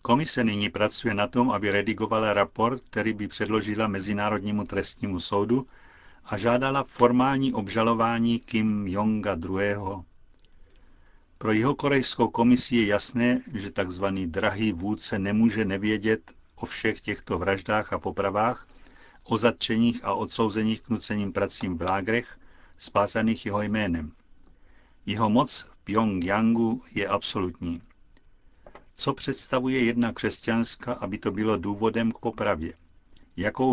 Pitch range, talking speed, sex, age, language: 95-120 Hz, 120 wpm, male, 50-69, Czech